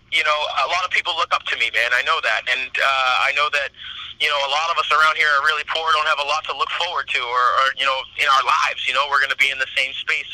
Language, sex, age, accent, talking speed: English, male, 30-49, American, 320 wpm